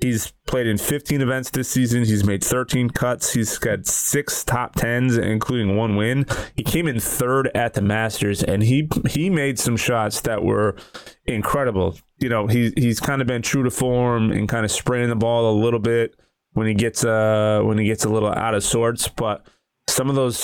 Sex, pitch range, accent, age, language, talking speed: male, 105-125 Hz, American, 30-49, English, 205 wpm